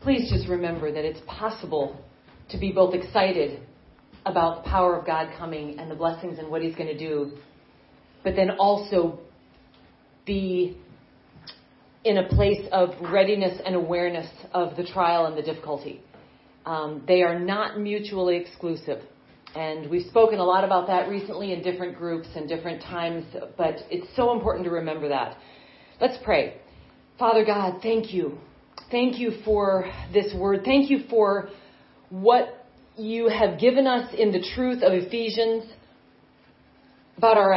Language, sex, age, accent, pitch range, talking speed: English, female, 40-59, American, 175-225 Hz, 150 wpm